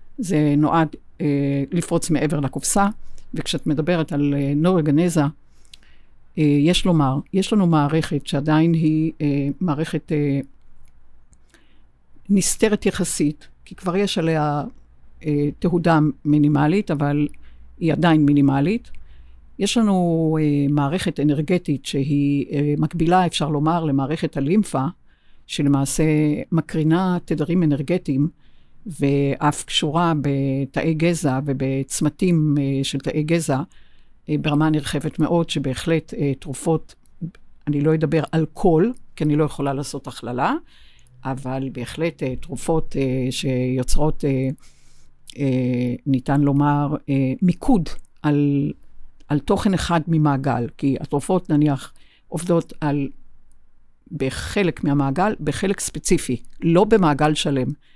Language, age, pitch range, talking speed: Hebrew, 50-69, 135-165 Hz, 105 wpm